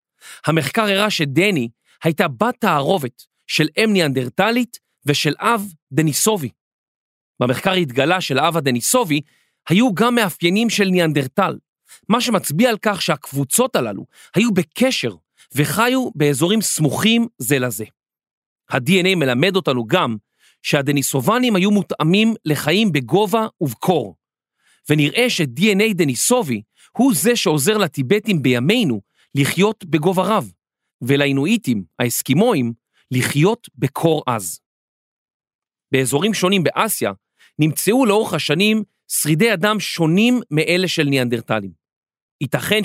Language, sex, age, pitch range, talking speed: Hebrew, male, 40-59, 135-205 Hz, 105 wpm